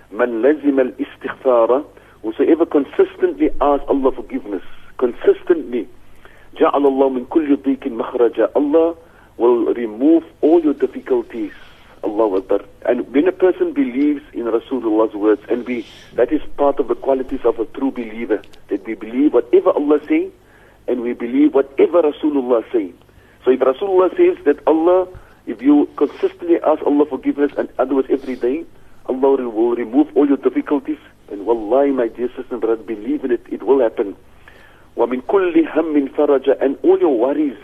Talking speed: 155 wpm